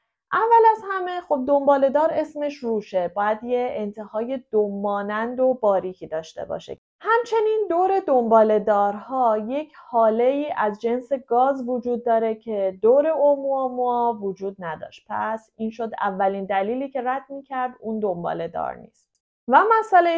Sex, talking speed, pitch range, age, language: female, 130 wpm, 215-305 Hz, 30-49, Persian